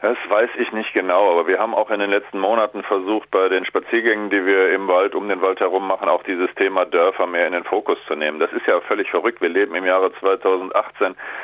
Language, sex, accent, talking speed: German, male, German, 240 wpm